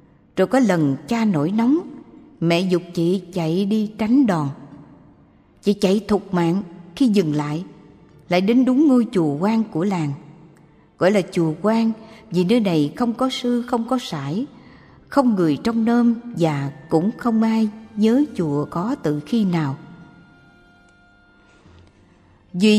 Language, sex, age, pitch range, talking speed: Vietnamese, female, 60-79, 155-230 Hz, 145 wpm